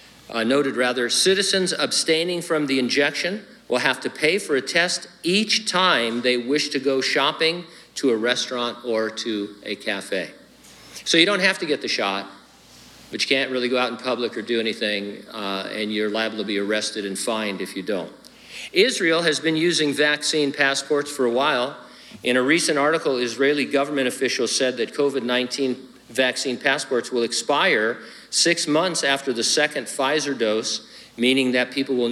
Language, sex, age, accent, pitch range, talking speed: English, male, 50-69, American, 115-150 Hz, 175 wpm